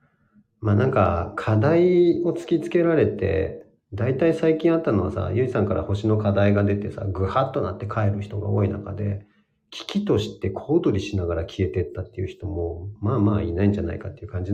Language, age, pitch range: Japanese, 40-59, 95-110 Hz